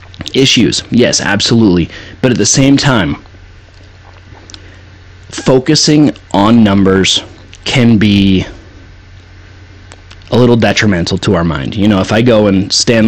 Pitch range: 95-140 Hz